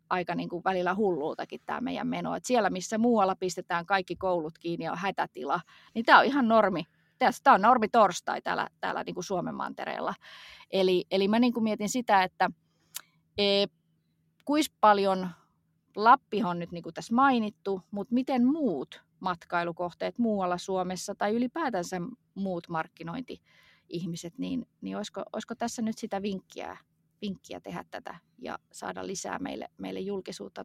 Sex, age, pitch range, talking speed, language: female, 20-39, 170-225 Hz, 150 wpm, Finnish